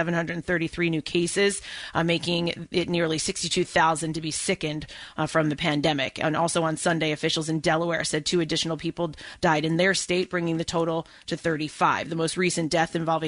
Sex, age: female, 30-49